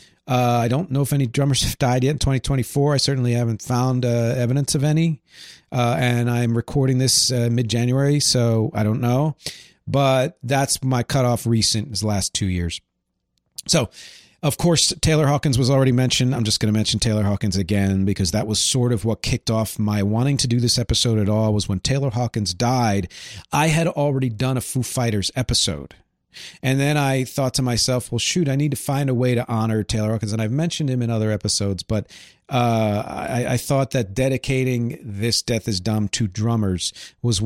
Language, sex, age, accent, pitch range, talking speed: English, male, 40-59, American, 110-140 Hz, 200 wpm